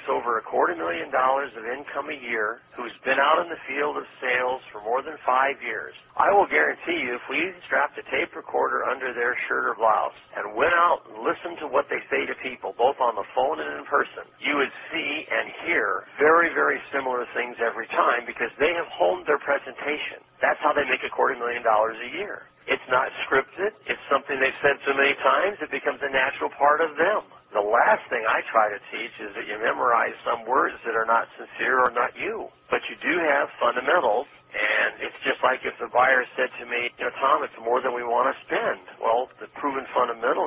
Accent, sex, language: American, male, English